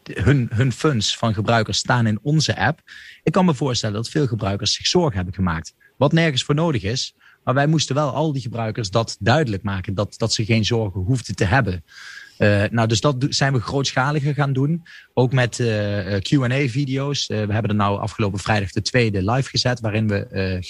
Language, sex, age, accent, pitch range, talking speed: Dutch, male, 30-49, Dutch, 105-130 Hz, 205 wpm